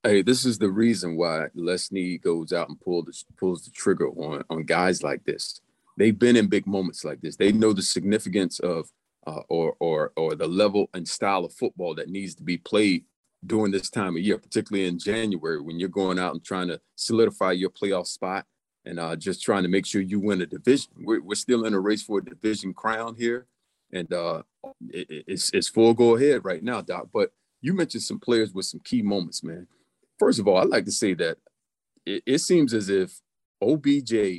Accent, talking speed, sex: American, 215 wpm, male